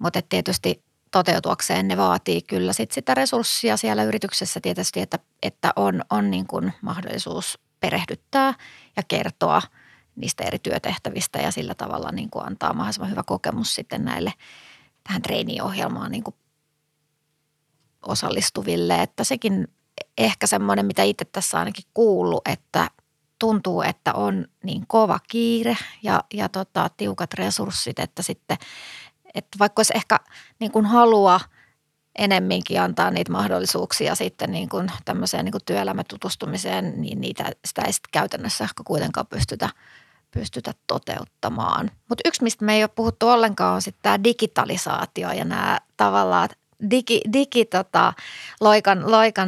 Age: 30-49